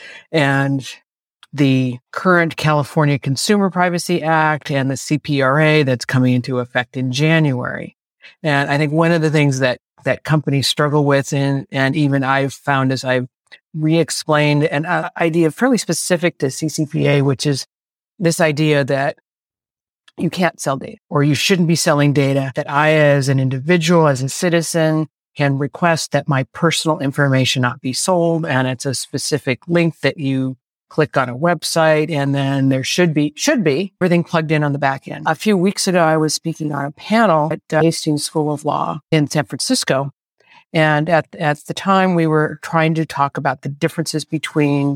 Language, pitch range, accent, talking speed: English, 140-165 Hz, American, 180 wpm